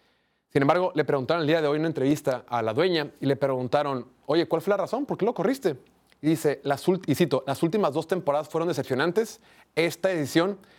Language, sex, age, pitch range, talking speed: Spanish, male, 30-49, 140-185 Hz, 210 wpm